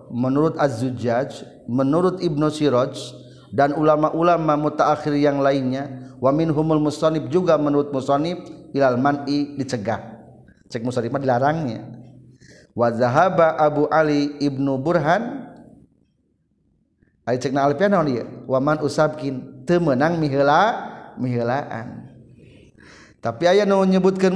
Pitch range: 125-160 Hz